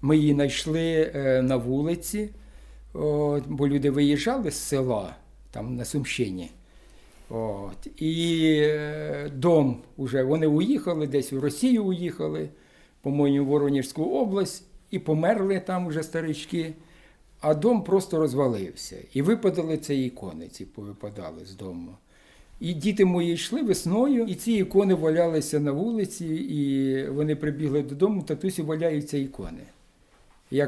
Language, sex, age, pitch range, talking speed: Ukrainian, male, 60-79, 135-175 Hz, 125 wpm